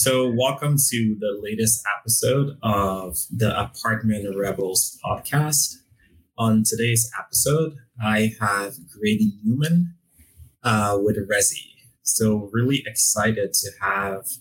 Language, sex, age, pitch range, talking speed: English, male, 20-39, 105-130 Hz, 110 wpm